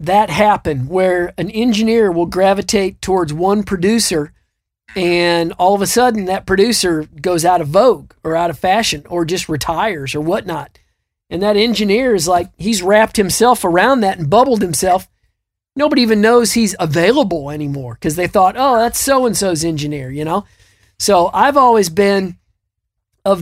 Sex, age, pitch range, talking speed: male, 40-59, 170-220 Hz, 160 wpm